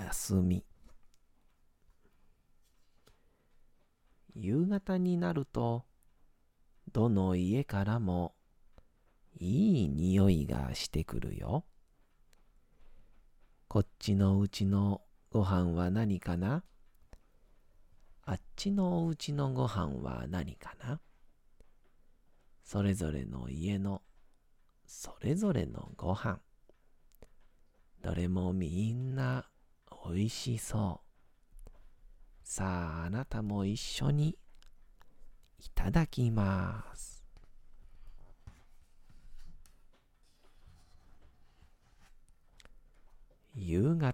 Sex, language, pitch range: male, Japanese, 80-110 Hz